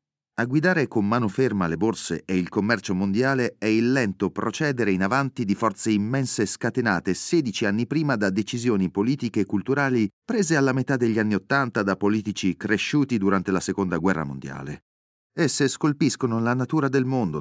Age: 30-49